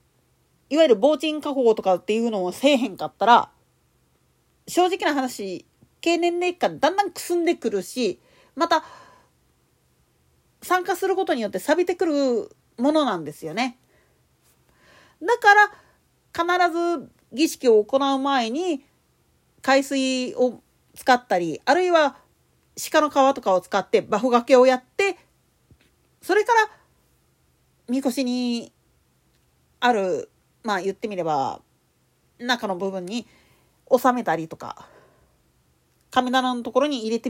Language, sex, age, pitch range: Japanese, female, 40-59, 225-345 Hz